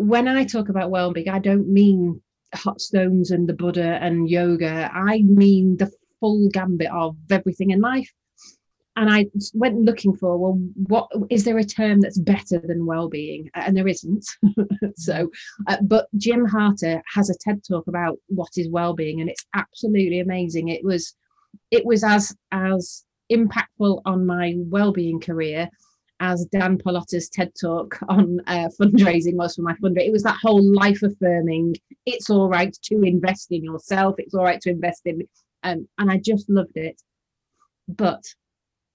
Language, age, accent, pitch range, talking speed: English, 30-49, British, 175-205 Hz, 165 wpm